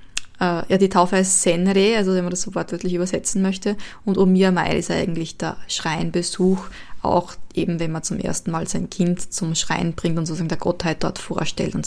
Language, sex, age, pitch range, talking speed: German, female, 20-39, 170-200 Hz, 190 wpm